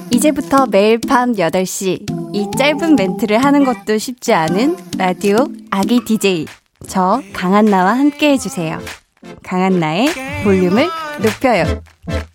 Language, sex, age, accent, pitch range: Korean, female, 20-39, native, 190-270 Hz